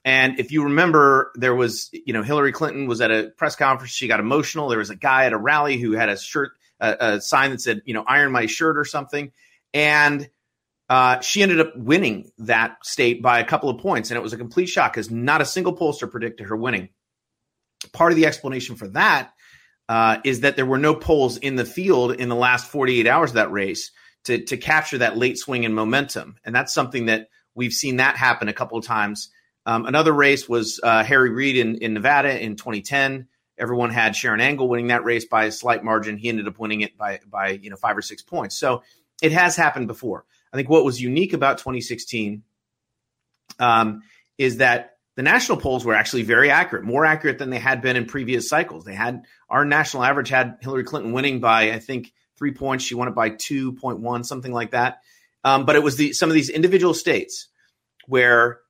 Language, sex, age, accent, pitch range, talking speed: English, male, 30-49, American, 115-145 Hz, 220 wpm